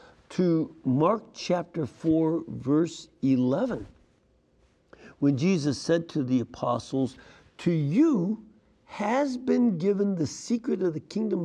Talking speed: 115 wpm